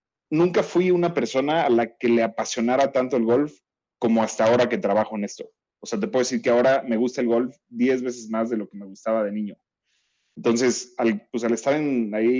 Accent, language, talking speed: Mexican, Spanish, 225 wpm